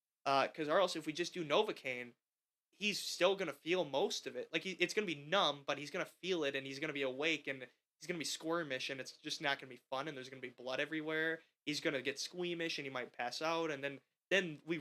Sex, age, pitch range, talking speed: male, 20-39, 135-160 Hz, 255 wpm